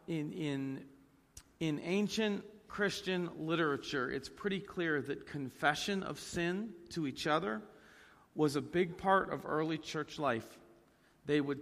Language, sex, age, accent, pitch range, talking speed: English, male, 40-59, American, 130-170 Hz, 135 wpm